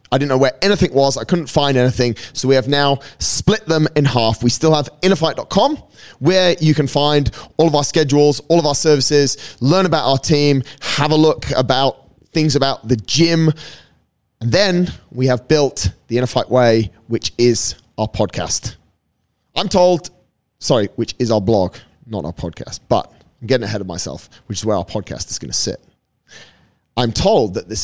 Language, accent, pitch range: English, British, 110-145 Hz